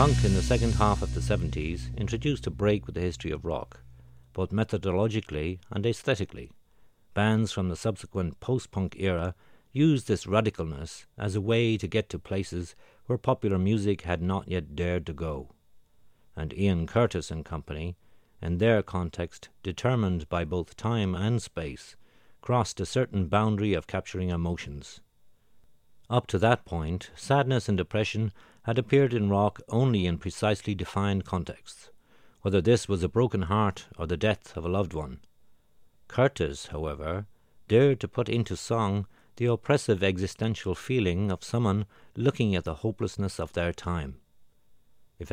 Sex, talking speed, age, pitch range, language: male, 155 wpm, 60-79, 85-110 Hz, Czech